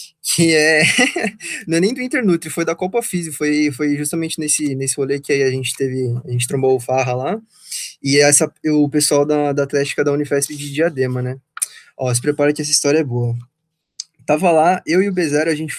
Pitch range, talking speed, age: 135-165 Hz, 215 wpm, 20-39